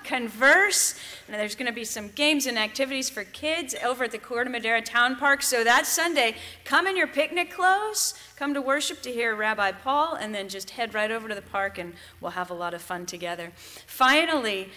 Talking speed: 210 wpm